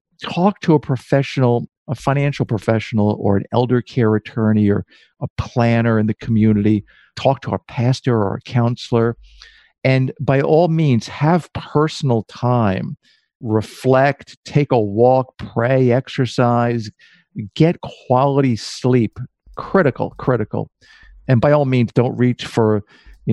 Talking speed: 130 wpm